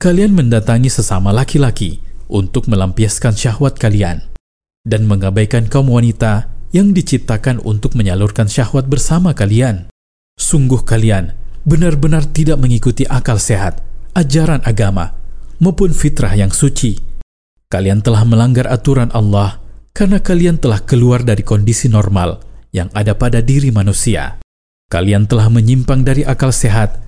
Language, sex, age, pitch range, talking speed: Indonesian, male, 40-59, 105-135 Hz, 120 wpm